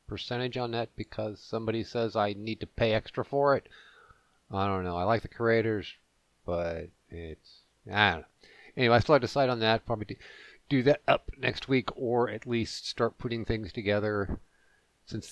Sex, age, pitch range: male, 50-69, 95-125 Hz